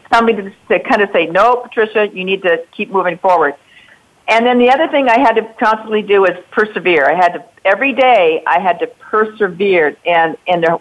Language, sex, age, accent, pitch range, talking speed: English, female, 50-69, American, 175-220 Hz, 200 wpm